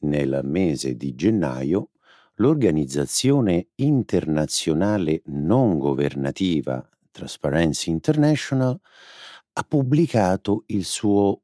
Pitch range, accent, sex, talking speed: 70-110 Hz, native, male, 75 wpm